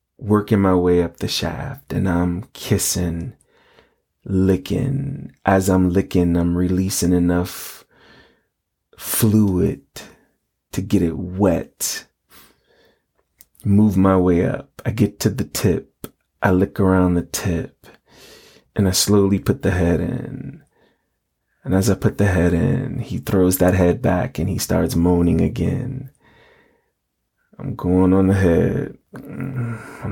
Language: English